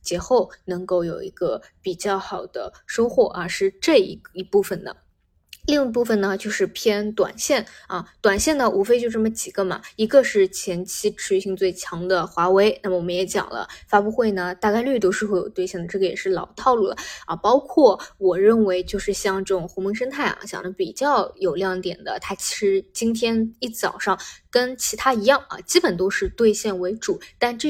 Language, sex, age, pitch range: Chinese, female, 20-39, 190-240 Hz